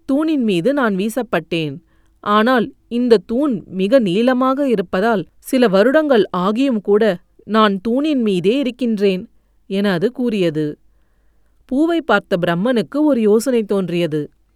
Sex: female